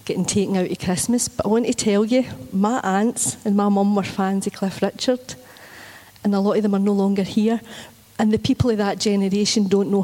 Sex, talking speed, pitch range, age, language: female, 225 wpm, 185-220 Hz, 40-59, English